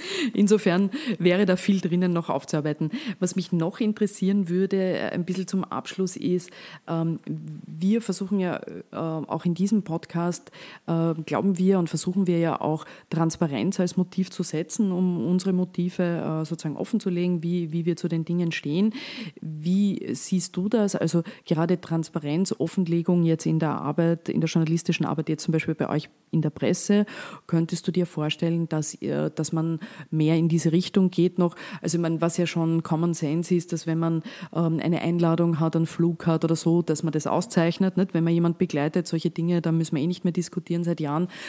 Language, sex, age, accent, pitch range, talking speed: German, female, 30-49, German, 165-185 Hz, 185 wpm